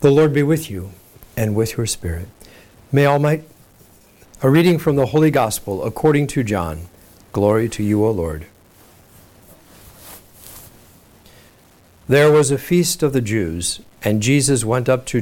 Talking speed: 145 wpm